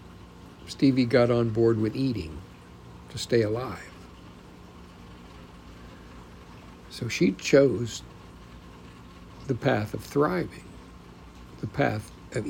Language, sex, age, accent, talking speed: English, male, 60-79, American, 90 wpm